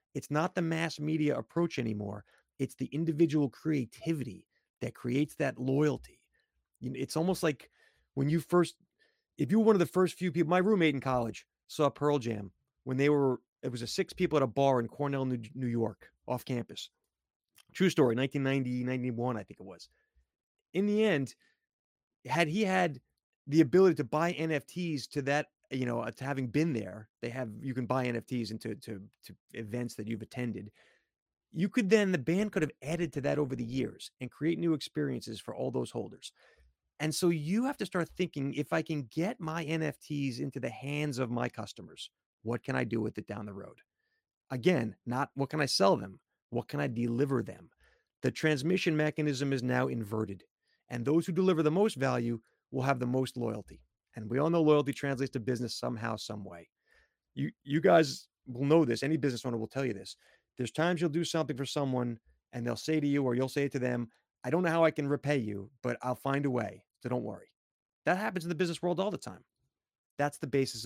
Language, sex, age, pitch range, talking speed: English, male, 30-49, 120-160 Hz, 205 wpm